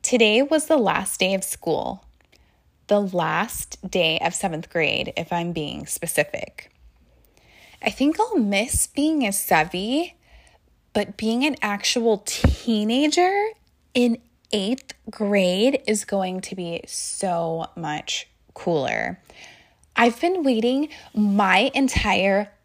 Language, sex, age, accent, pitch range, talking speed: English, female, 10-29, American, 185-245 Hz, 115 wpm